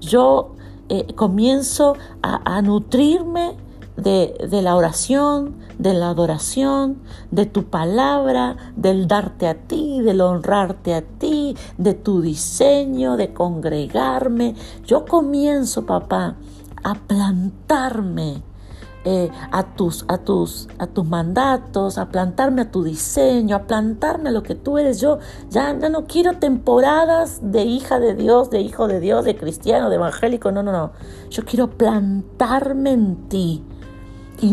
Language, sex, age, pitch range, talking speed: Spanish, female, 50-69, 175-270 Hz, 140 wpm